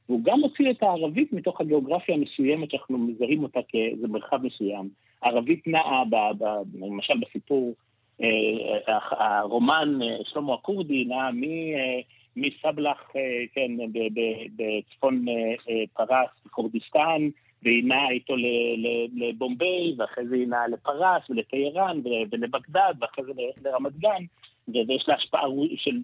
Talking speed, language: 120 wpm, Hebrew